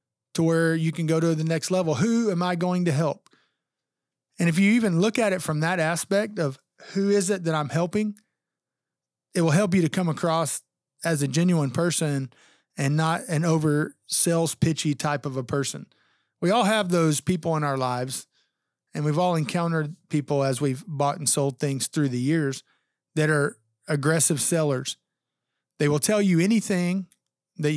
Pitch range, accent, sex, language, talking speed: 145-180 Hz, American, male, English, 185 wpm